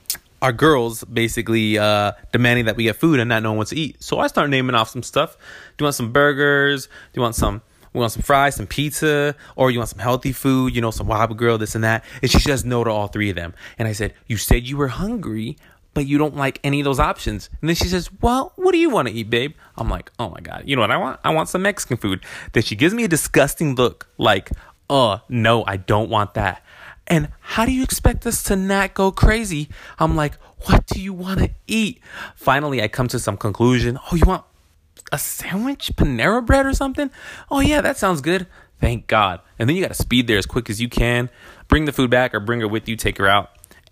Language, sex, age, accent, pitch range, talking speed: English, male, 20-39, American, 110-170 Hz, 245 wpm